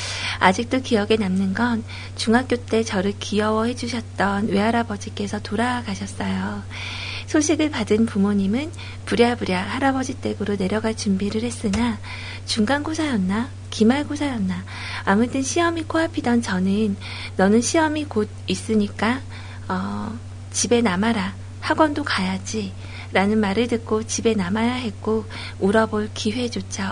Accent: native